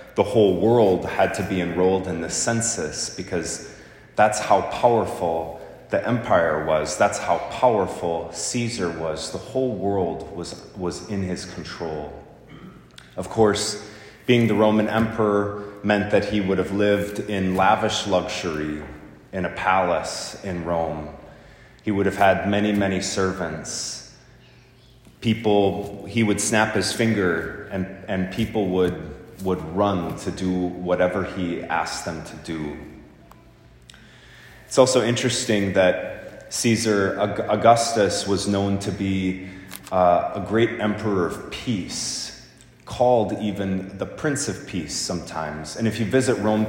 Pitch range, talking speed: 90-105 Hz, 135 wpm